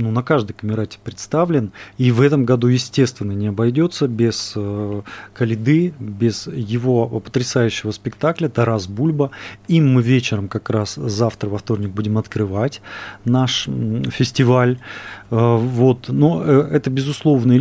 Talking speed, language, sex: 120 wpm, Russian, male